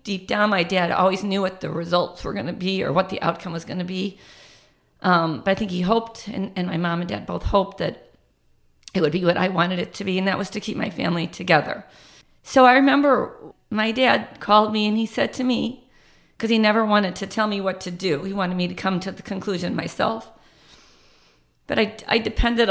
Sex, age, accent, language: female, 40-59, American, English